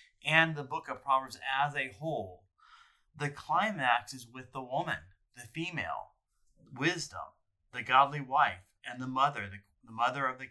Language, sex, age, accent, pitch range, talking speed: English, male, 30-49, American, 115-145 Hz, 160 wpm